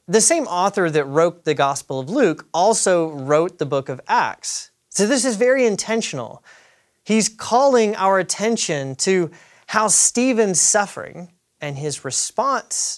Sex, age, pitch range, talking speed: male, 30-49, 155-215 Hz, 145 wpm